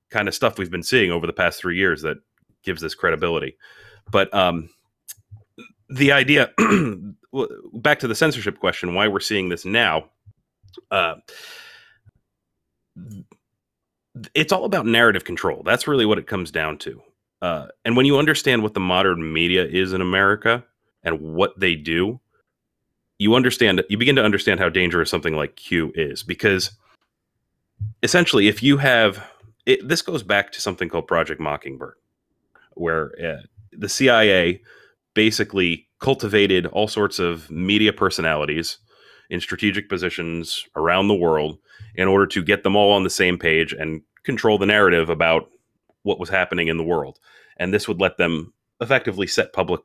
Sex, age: male, 30-49